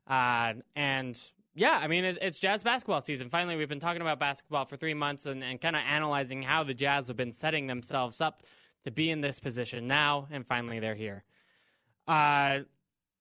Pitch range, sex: 135-160 Hz, male